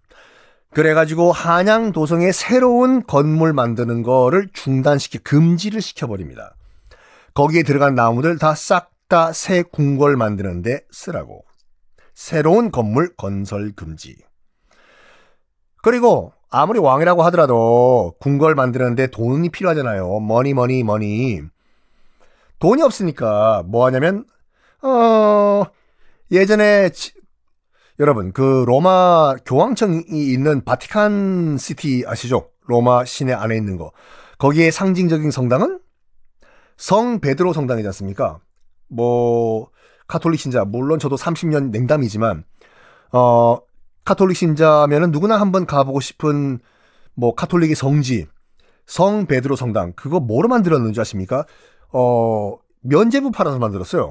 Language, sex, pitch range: Korean, male, 120-175 Hz